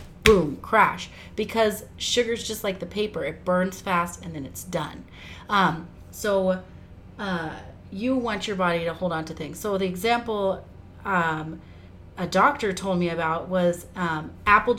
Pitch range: 180-230 Hz